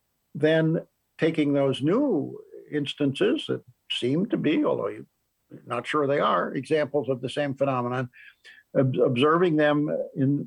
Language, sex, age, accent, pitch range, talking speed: English, male, 60-79, American, 120-145 Hz, 130 wpm